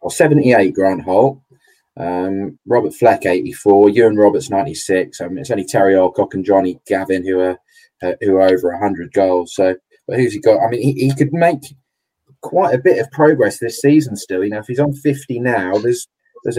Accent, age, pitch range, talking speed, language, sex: British, 20-39, 110-140 Hz, 205 wpm, English, male